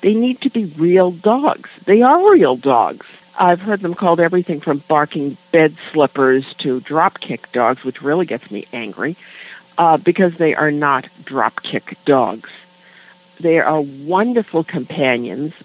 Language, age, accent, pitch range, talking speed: English, 60-79, American, 150-205 Hz, 145 wpm